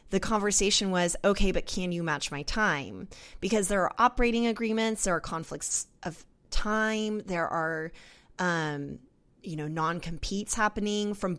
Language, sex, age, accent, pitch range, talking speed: English, female, 20-39, American, 160-210 Hz, 150 wpm